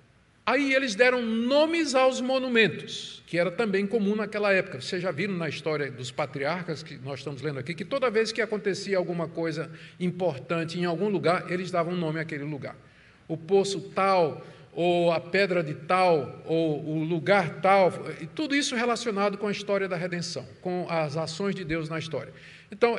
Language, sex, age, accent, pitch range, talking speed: Portuguese, male, 50-69, Brazilian, 165-215 Hz, 175 wpm